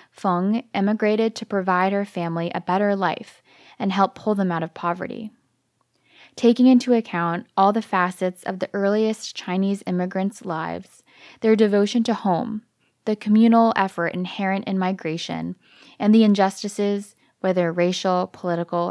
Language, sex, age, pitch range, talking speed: English, female, 10-29, 180-220 Hz, 140 wpm